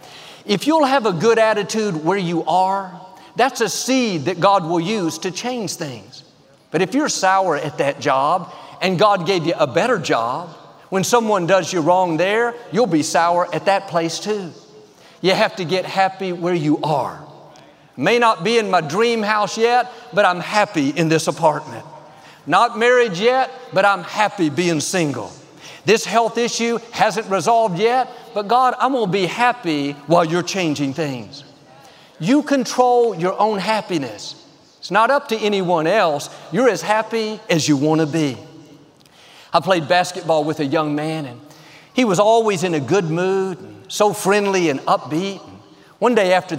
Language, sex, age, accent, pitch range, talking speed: English, male, 50-69, American, 165-225 Hz, 175 wpm